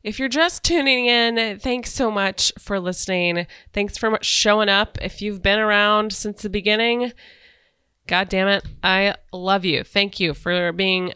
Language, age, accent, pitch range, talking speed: English, 20-39, American, 180-220 Hz, 165 wpm